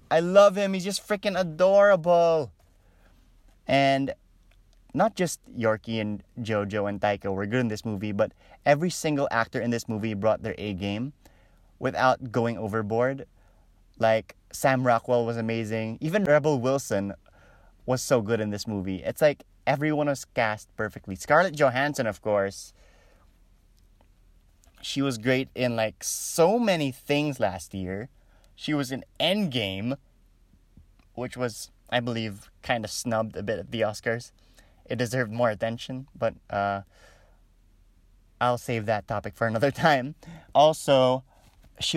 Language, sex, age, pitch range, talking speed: English, male, 30-49, 100-145 Hz, 140 wpm